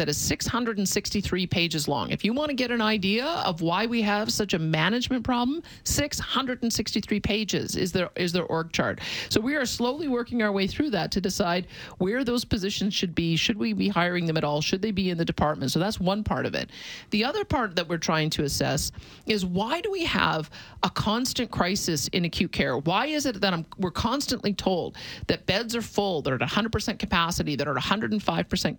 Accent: American